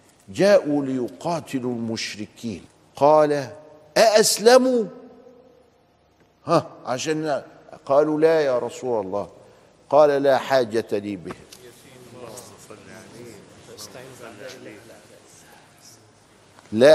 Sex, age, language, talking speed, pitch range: male, 50-69, Arabic, 65 wpm, 115-165 Hz